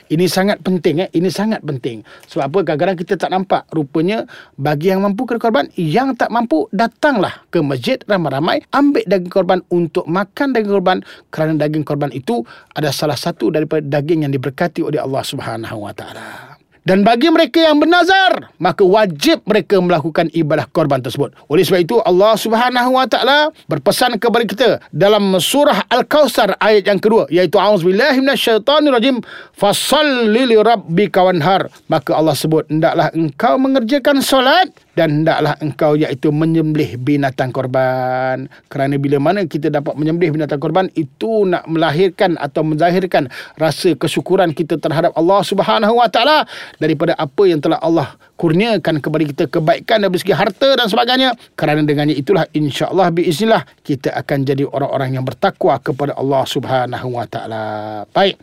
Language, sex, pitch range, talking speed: Malay, male, 155-220 Hz, 150 wpm